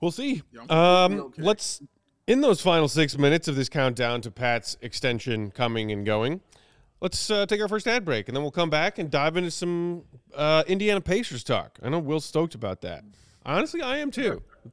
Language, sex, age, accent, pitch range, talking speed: English, male, 30-49, American, 120-185 Hz, 200 wpm